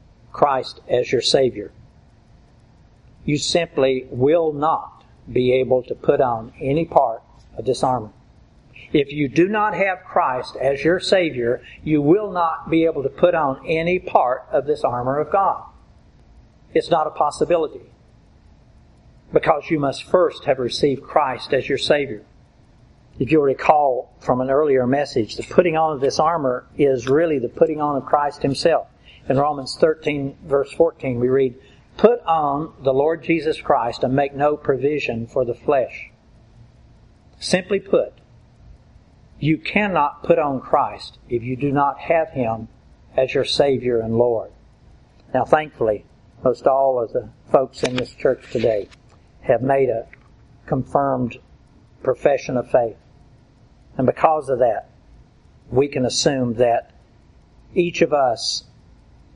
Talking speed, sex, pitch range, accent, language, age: 145 wpm, male, 130-165 Hz, American, English, 60-79